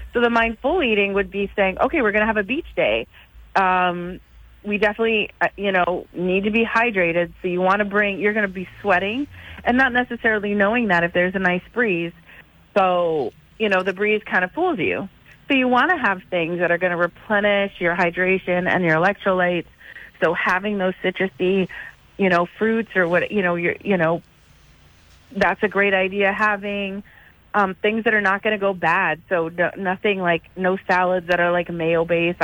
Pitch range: 175-210 Hz